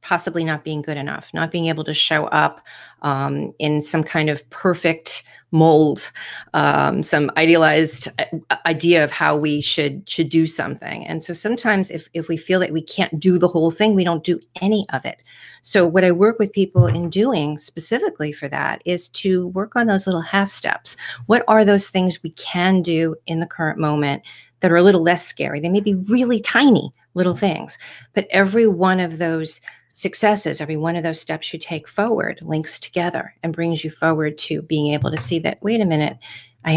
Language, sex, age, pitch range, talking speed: English, female, 40-59, 155-185 Hz, 200 wpm